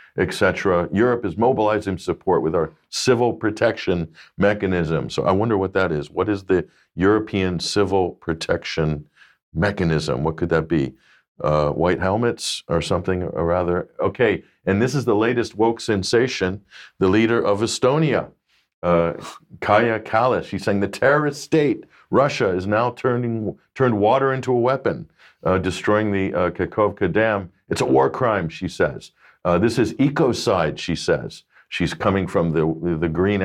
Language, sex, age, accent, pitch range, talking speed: English, male, 50-69, American, 90-105 Hz, 155 wpm